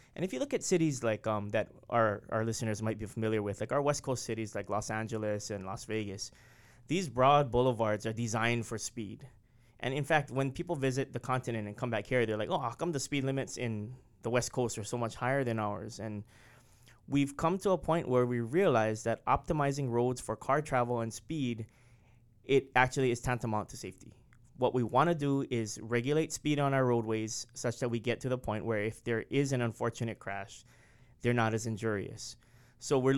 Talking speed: 210 wpm